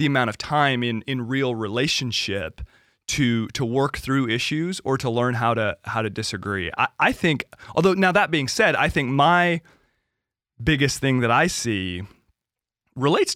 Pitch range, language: 110-140 Hz, English